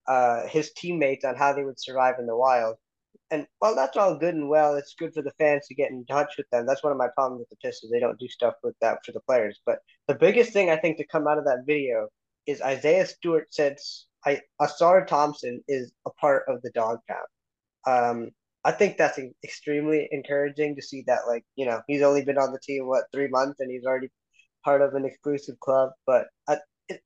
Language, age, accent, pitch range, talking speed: English, 20-39, American, 135-155 Hz, 225 wpm